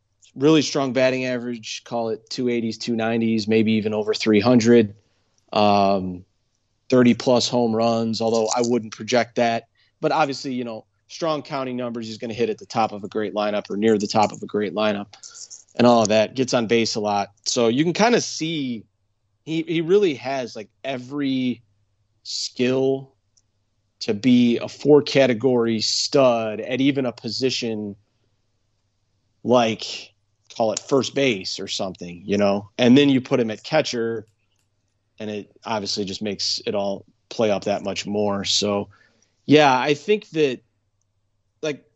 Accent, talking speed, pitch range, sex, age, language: American, 160 wpm, 105-130 Hz, male, 30-49, English